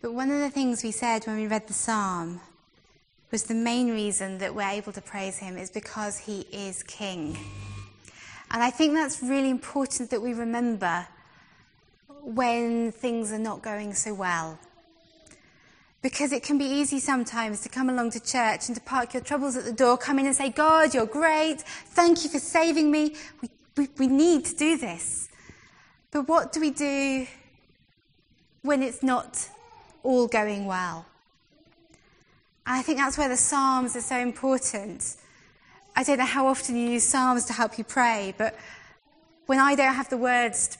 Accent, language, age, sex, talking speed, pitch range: British, English, 20-39, female, 180 wpm, 210-275 Hz